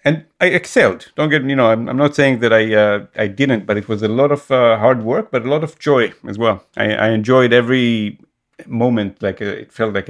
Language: English